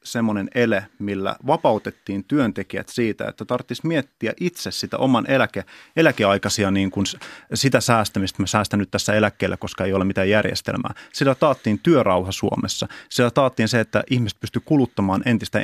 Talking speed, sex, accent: 155 wpm, male, native